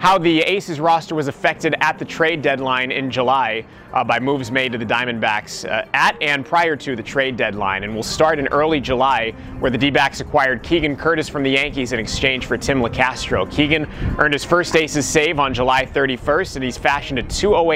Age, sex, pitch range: 30-49, male, 120-145 Hz